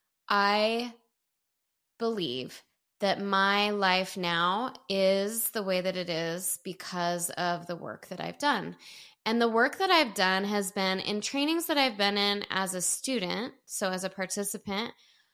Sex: female